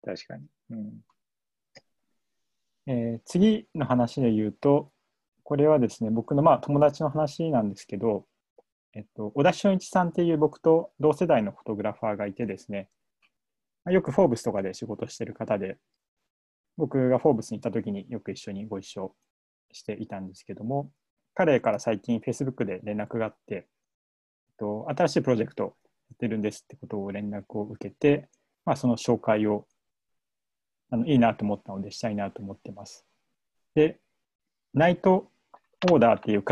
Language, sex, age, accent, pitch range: Japanese, male, 20-39, native, 105-145 Hz